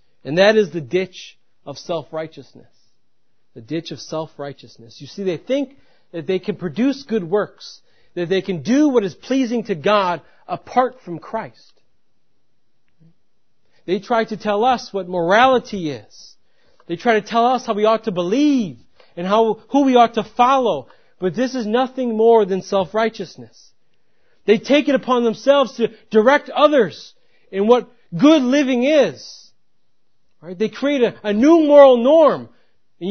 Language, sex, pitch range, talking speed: English, male, 170-245 Hz, 155 wpm